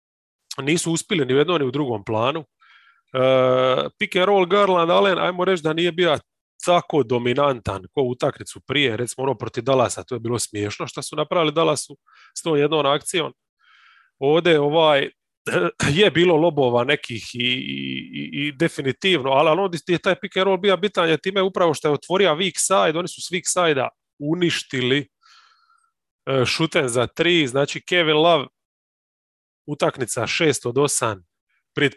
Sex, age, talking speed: male, 30-49, 160 wpm